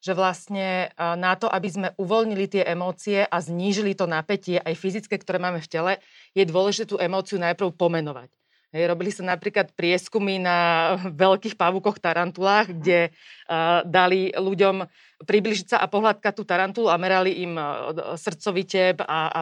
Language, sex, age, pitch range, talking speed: Slovak, female, 30-49, 185-220 Hz, 150 wpm